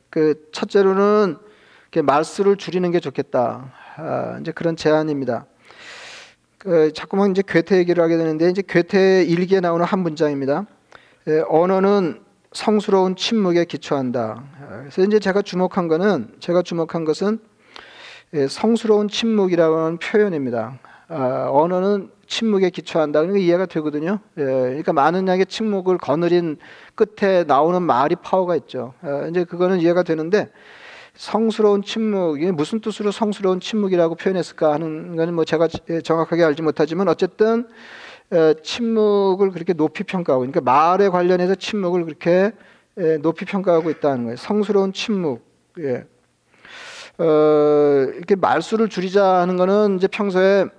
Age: 40-59